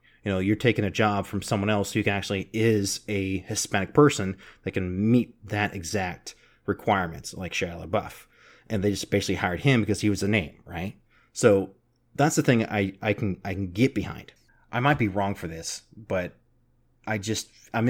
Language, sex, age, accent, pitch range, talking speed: English, male, 30-49, American, 100-120 Hz, 195 wpm